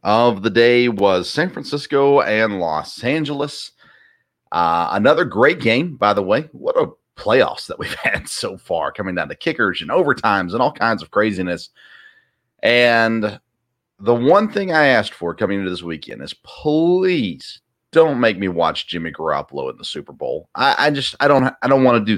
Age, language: 30-49, English